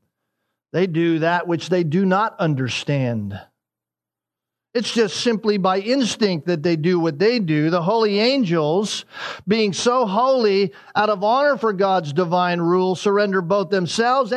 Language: English